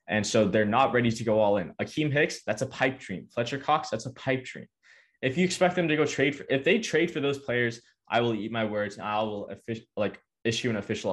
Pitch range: 100-120 Hz